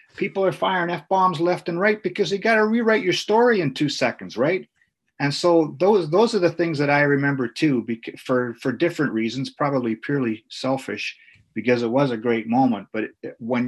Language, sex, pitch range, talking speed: English, male, 110-135 Hz, 195 wpm